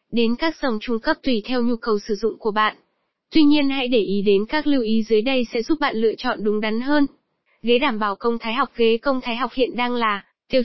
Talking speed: 260 wpm